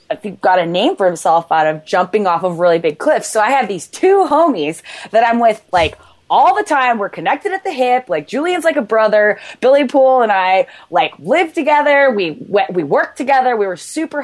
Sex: female